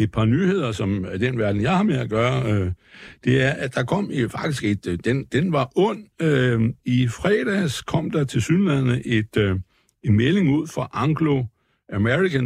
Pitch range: 115-155 Hz